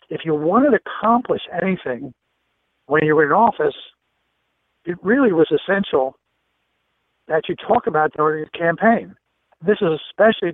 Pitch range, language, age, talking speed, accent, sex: 150-215 Hz, English, 60-79, 140 wpm, American, male